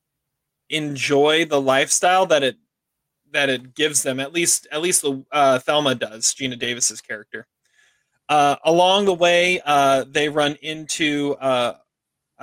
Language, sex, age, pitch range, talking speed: English, male, 30-49, 135-155 Hz, 140 wpm